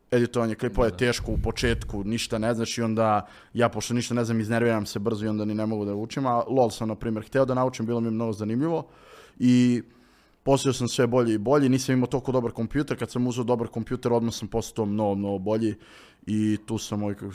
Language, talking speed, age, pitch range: Croatian, 225 wpm, 20-39, 105-125 Hz